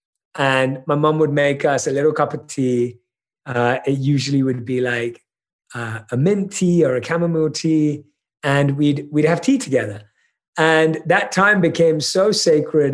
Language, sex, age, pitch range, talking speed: English, male, 30-49, 140-190 Hz, 170 wpm